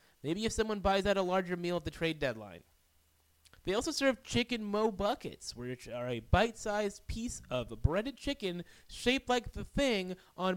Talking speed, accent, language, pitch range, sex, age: 175 wpm, American, English, 125-200 Hz, male, 30-49